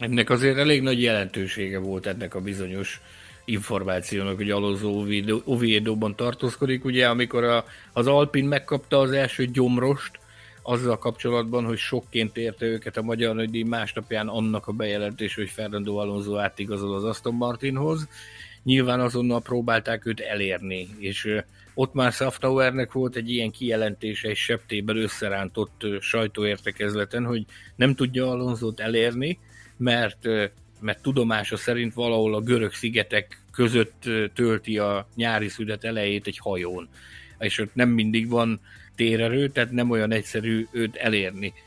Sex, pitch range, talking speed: male, 110-125 Hz, 135 wpm